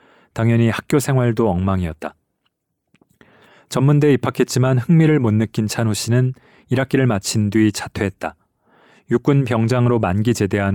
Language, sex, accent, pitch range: Korean, male, native, 110-130 Hz